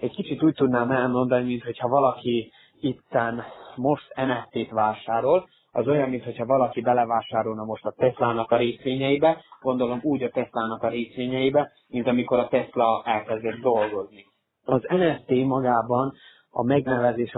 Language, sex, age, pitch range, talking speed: Hungarian, male, 30-49, 115-130 Hz, 130 wpm